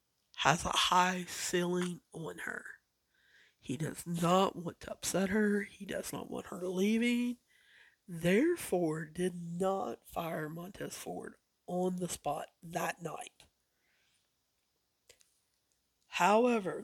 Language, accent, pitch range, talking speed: English, American, 170-215 Hz, 110 wpm